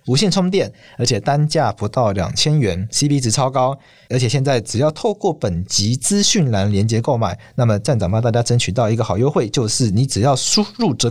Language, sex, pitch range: Chinese, male, 115-155 Hz